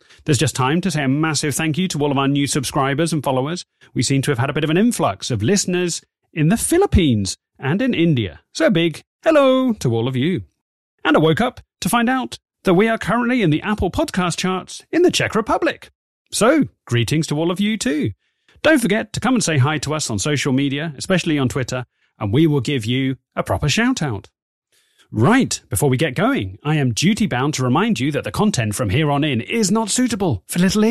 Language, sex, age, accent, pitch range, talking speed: English, male, 30-49, British, 130-210 Hz, 225 wpm